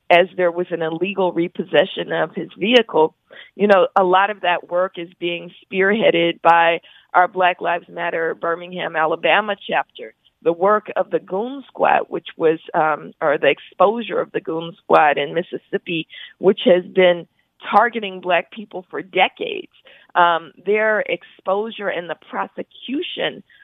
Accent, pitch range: American, 170-210 Hz